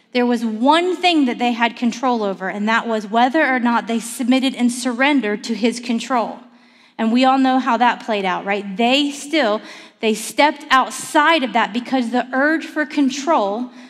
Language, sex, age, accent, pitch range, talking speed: English, female, 30-49, American, 230-275 Hz, 185 wpm